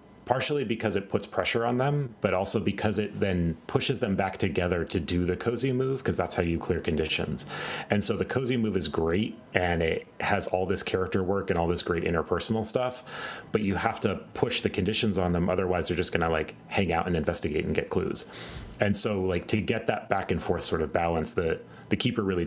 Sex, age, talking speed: male, 30-49, 225 wpm